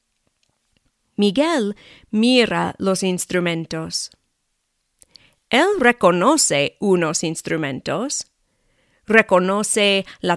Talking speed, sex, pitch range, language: 60 wpm, female, 185-260 Hz, English